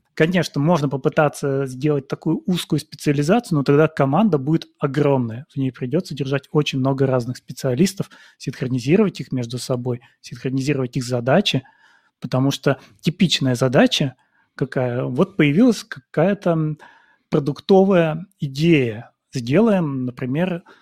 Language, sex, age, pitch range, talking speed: Ukrainian, male, 30-49, 135-170 Hz, 110 wpm